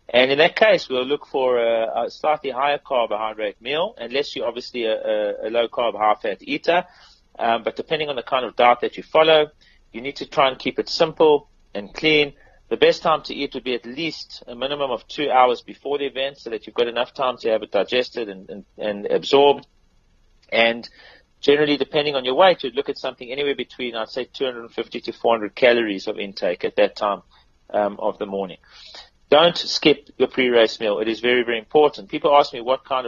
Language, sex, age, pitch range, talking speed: English, male, 30-49, 115-145 Hz, 205 wpm